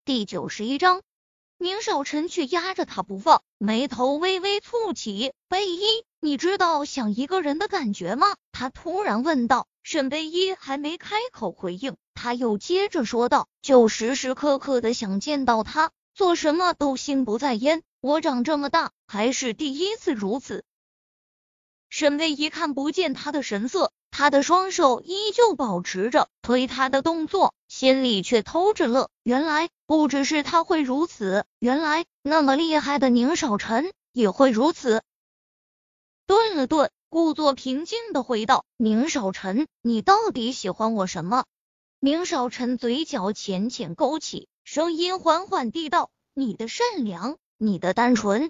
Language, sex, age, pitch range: Chinese, female, 20-39, 240-330 Hz